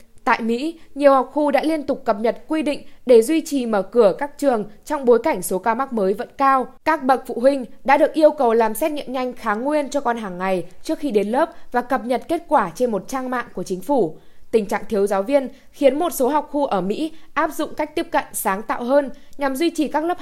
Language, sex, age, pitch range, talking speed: Vietnamese, female, 10-29, 220-285 Hz, 260 wpm